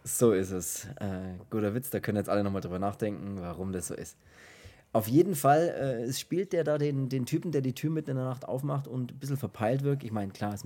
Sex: male